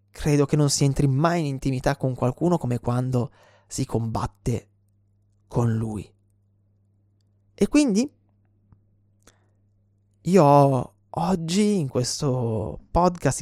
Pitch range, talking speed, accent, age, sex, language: 100-140 Hz, 105 wpm, native, 20-39, male, Italian